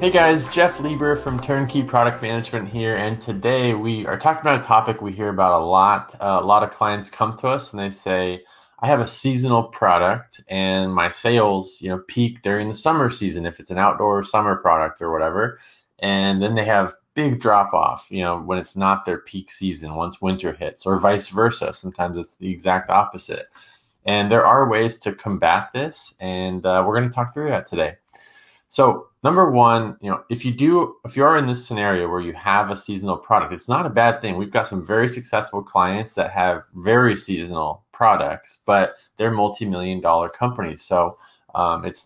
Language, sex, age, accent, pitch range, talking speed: English, male, 20-39, American, 95-115 Hz, 200 wpm